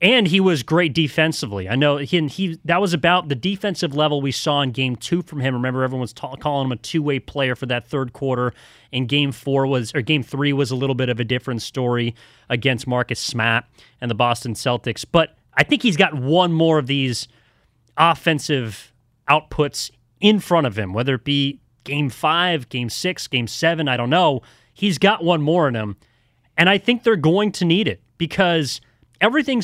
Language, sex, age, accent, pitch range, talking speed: English, male, 30-49, American, 125-165 Hz, 205 wpm